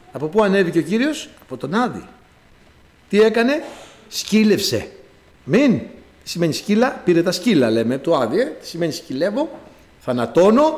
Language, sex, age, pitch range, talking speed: Greek, male, 60-79, 155-240 Hz, 145 wpm